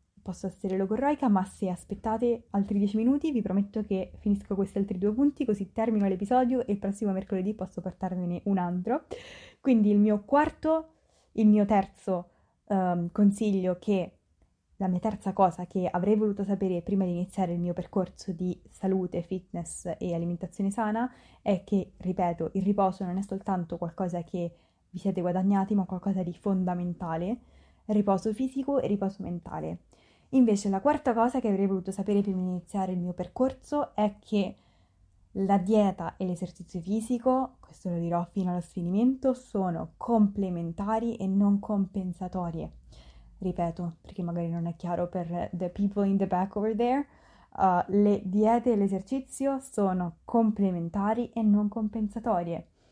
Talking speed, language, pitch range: 155 wpm, Italian, 180-215 Hz